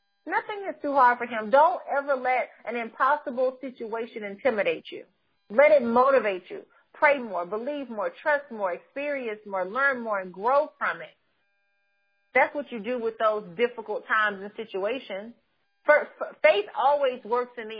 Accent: American